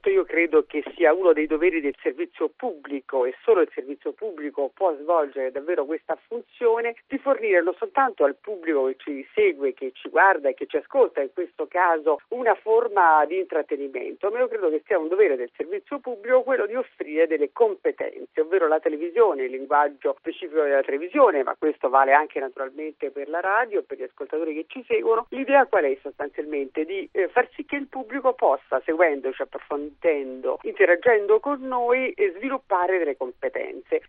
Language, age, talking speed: Italian, 50-69, 180 wpm